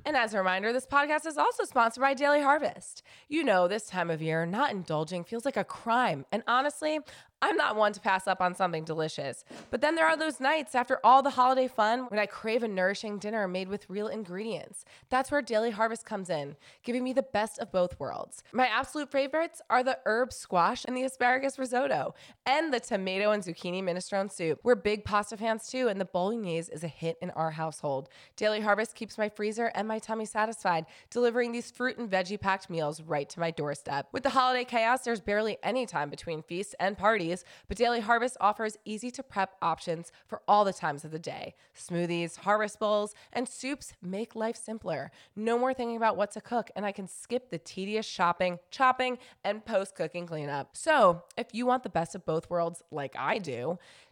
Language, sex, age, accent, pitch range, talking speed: English, female, 20-39, American, 180-250 Hz, 205 wpm